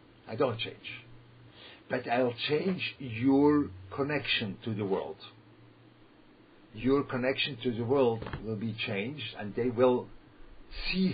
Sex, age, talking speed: male, 50-69, 125 wpm